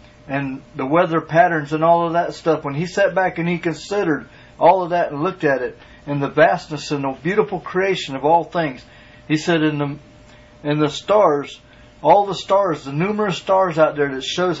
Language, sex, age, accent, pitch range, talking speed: English, male, 40-59, American, 135-175 Hz, 205 wpm